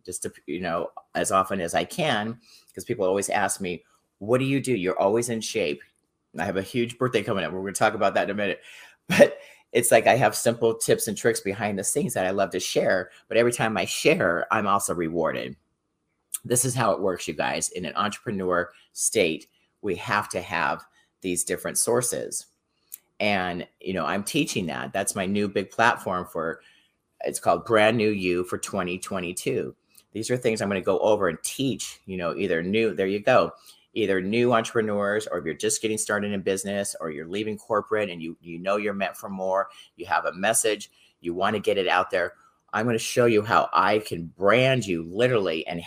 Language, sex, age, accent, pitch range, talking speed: English, male, 40-59, American, 95-115 Hz, 210 wpm